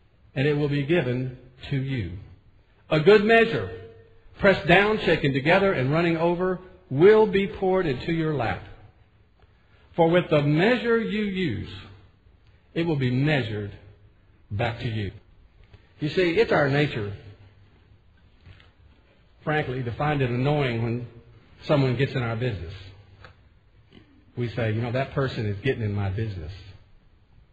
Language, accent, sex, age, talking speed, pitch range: English, American, male, 50-69, 135 wpm, 100-150 Hz